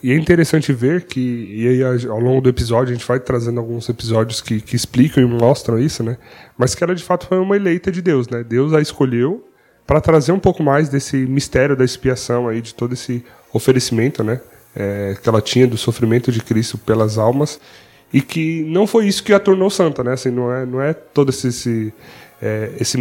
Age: 20-39